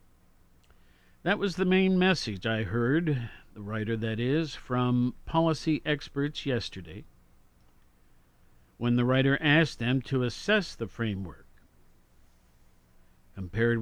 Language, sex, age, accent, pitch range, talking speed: English, male, 50-69, American, 95-140 Hz, 110 wpm